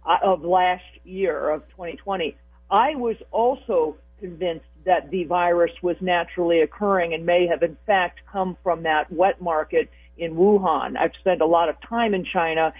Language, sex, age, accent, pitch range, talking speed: English, female, 50-69, American, 160-200 Hz, 170 wpm